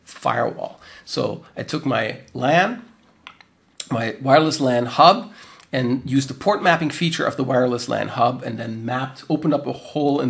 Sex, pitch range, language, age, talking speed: male, 125-160 Hz, English, 40-59, 170 wpm